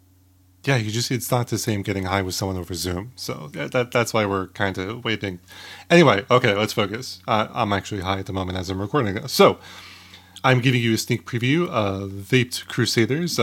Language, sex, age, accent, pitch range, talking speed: English, male, 30-49, American, 95-115 Hz, 205 wpm